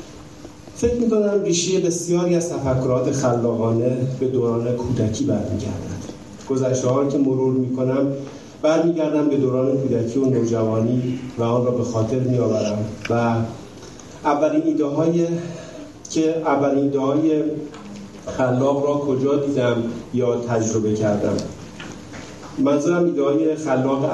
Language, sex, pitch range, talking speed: Persian, male, 120-155 Hz, 115 wpm